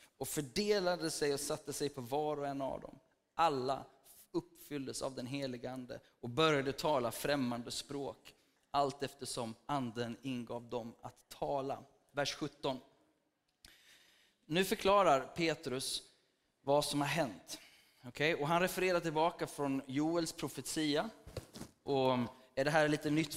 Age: 20-39